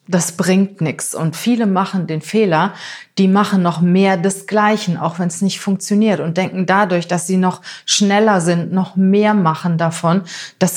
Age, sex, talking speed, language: 30-49, female, 175 wpm, German